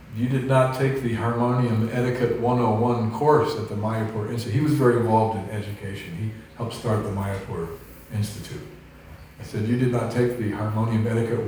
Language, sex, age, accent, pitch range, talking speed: English, male, 50-69, American, 105-125 Hz, 180 wpm